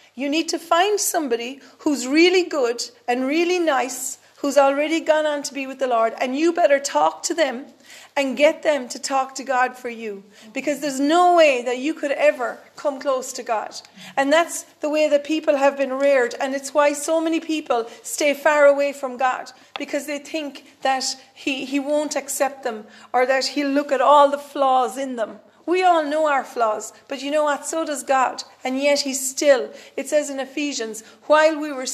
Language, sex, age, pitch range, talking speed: English, female, 40-59, 245-295 Hz, 205 wpm